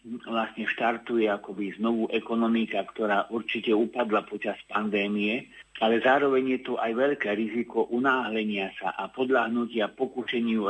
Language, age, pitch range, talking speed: Slovak, 50-69, 105-120 Hz, 125 wpm